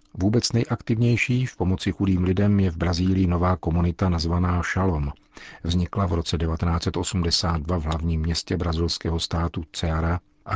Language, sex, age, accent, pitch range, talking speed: Czech, male, 50-69, native, 85-95 Hz, 135 wpm